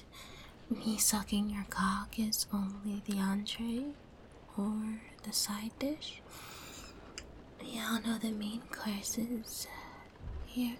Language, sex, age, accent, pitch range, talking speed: English, female, 20-39, American, 215-245 Hz, 105 wpm